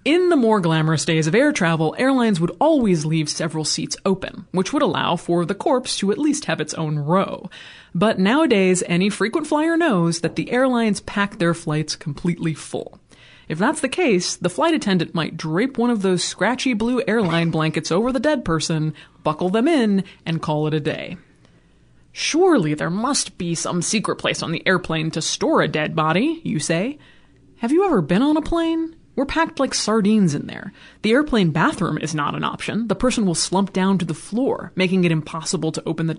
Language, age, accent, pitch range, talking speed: English, 20-39, American, 160-235 Hz, 200 wpm